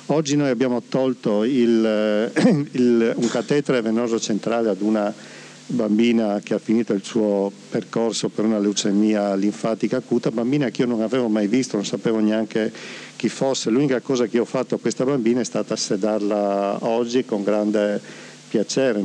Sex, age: male, 50-69